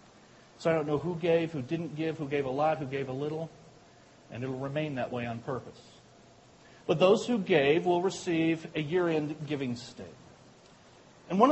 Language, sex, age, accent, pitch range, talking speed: English, male, 50-69, American, 165-225 Hz, 195 wpm